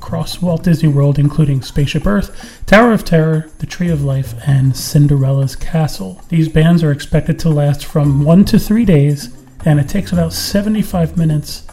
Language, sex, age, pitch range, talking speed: English, male, 40-59, 145-180 Hz, 175 wpm